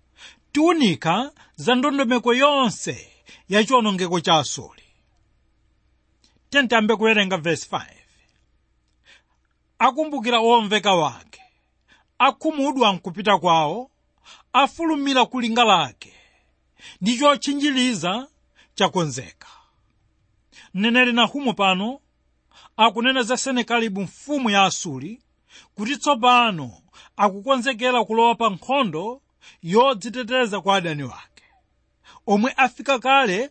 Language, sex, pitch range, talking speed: English, male, 180-255 Hz, 80 wpm